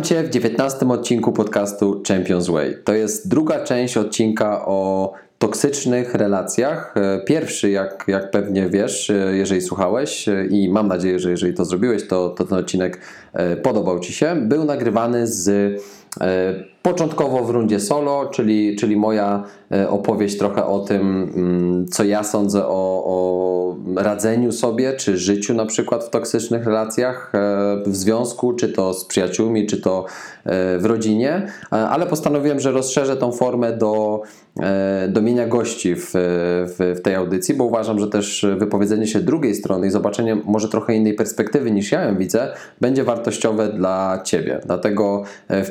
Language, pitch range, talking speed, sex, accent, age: Polish, 95-115 Hz, 150 wpm, male, native, 20-39